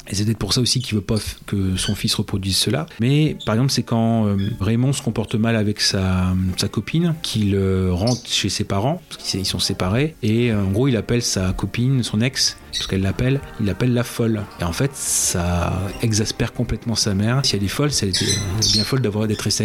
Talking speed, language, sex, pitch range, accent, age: 215 wpm, French, male, 105-125 Hz, French, 30-49